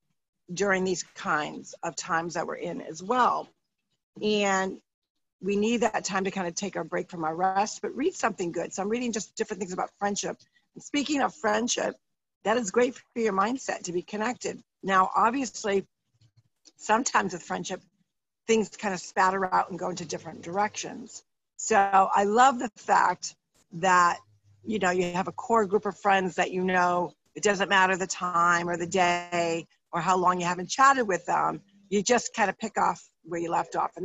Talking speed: 190 wpm